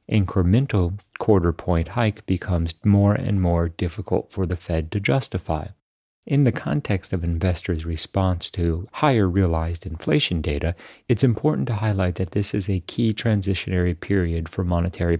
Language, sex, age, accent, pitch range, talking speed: English, male, 40-59, American, 85-110 Hz, 145 wpm